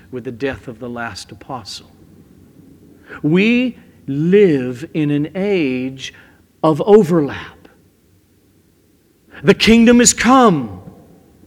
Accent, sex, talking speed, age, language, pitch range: American, male, 95 wpm, 50-69, English, 155-235 Hz